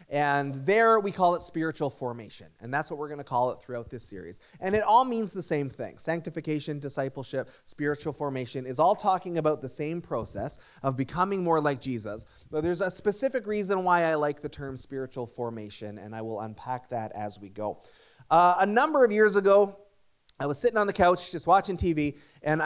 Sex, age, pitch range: male, 30-49, 125-170 Hz